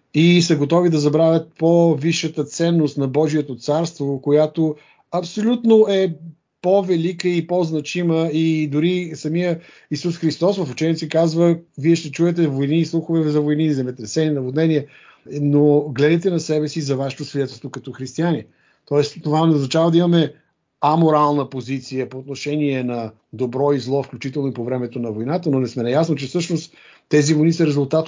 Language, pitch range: Bulgarian, 135-165 Hz